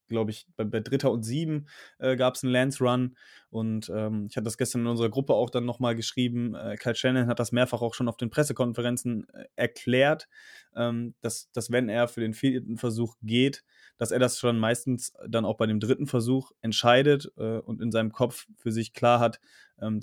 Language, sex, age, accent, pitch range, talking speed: German, male, 20-39, German, 110-125 Hz, 215 wpm